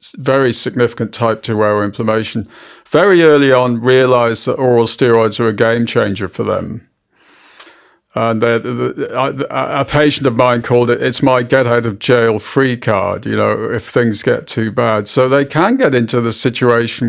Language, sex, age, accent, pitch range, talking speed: English, male, 50-69, British, 120-155 Hz, 170 wpm